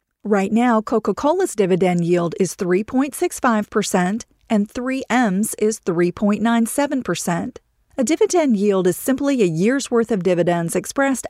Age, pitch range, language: 40-59, 190-250 Hz, English